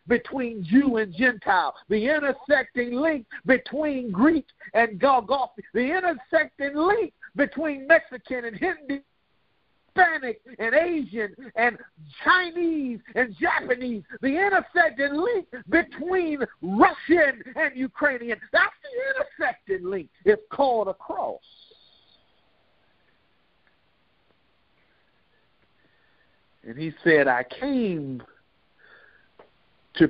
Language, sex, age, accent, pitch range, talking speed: English, male, 50-69, American, 215-315 Hz, 90 wpm